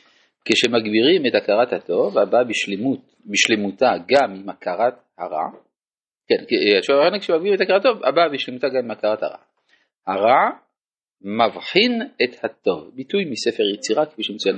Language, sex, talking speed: Hebrew, male, 90 wpm